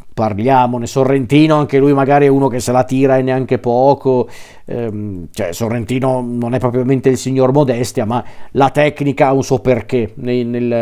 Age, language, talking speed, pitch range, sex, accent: 40-59, Italian, 170 wpm, 125-145 Hz, male, native